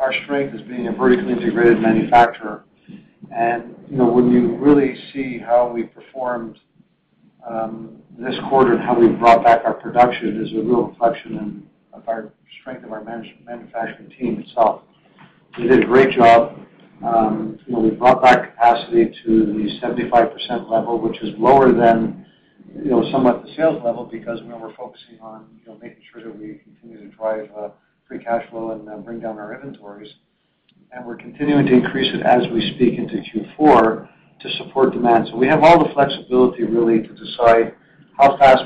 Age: 50-69